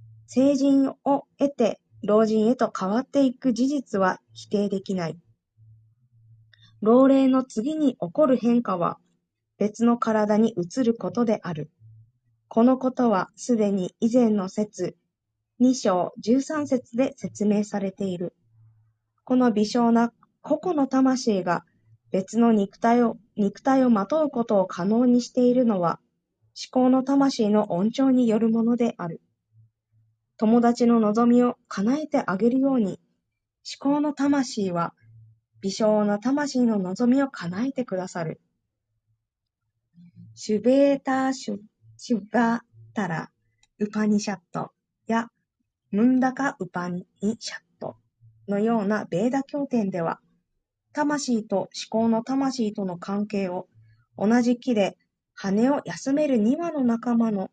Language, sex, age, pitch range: Japanese, female, 20-39, 175-250 Hz